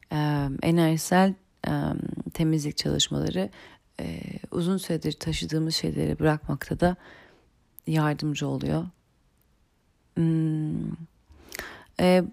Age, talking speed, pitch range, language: 40-59, 80 wpm, 155-180 Hz, Turkish